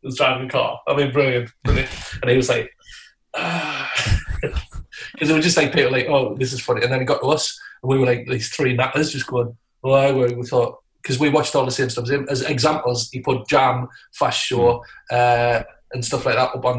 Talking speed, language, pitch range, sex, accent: 245 wpm, English, 120-135 Hz, male, British